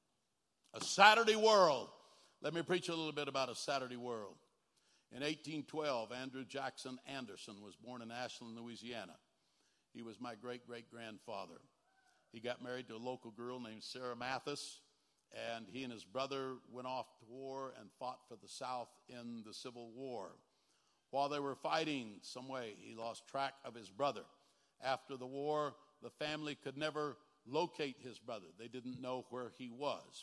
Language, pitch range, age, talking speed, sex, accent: English, 120-145 Hz, 60-79, 165 wpm, male, American